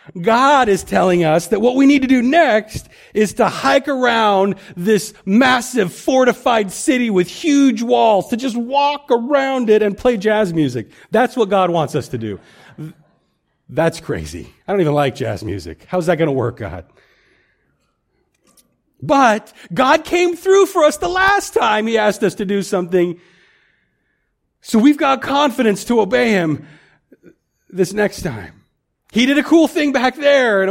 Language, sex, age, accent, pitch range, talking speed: English, male, 40-59, American, 155-235 Hz, 165 wpm